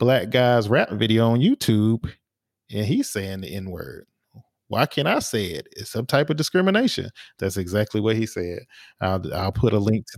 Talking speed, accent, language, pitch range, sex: 195 wpm, American, English, 100-125 Hz, male